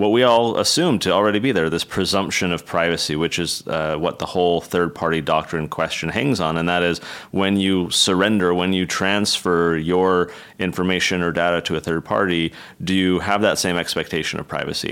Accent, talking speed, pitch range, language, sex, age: American, 195 wpm, 80-95 Hz, English, male, 30-49